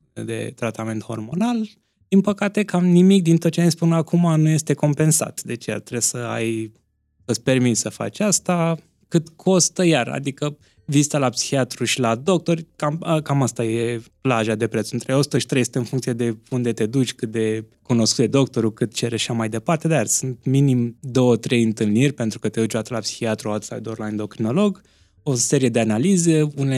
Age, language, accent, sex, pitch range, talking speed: 20-39, Romanian, native, male, 115-155 Hz, 190 wpm